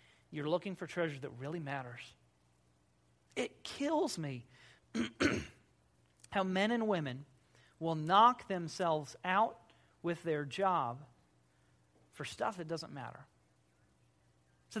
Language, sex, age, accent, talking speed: English, male, 40-59, American, 110 wpm